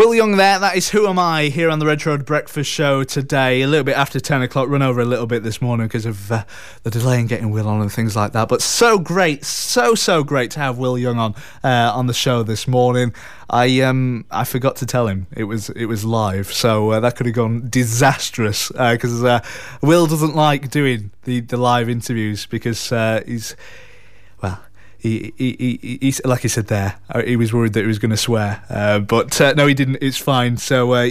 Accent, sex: British, male